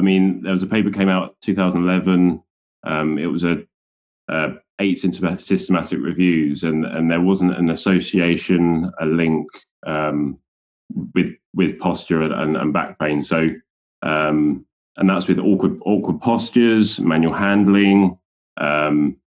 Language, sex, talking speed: English, male, 135 wpm